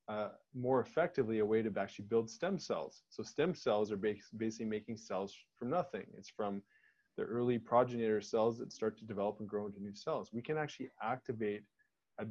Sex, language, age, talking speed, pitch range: male, English, 20-39, 195 wpm, 105-125 Hz